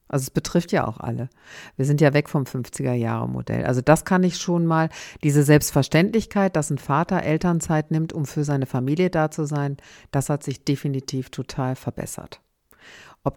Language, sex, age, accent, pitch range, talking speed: German, female, 50-69, German, 140-160 Hz, 175 wpm